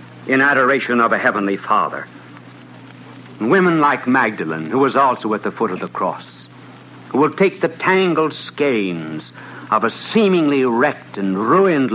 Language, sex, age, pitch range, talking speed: English, male, 60-79, 110-155 Hz, 150 wpm